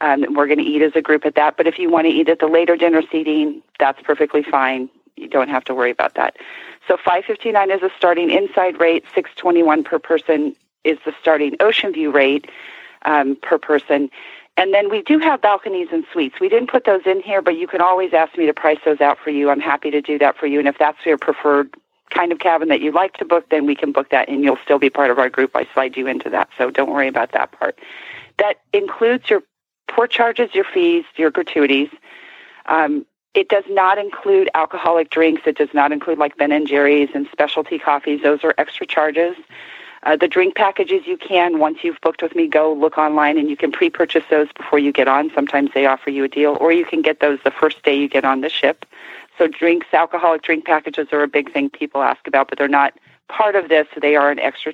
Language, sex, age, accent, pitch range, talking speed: English, female, 40-59, American, 145-185 Hz, 235 wpm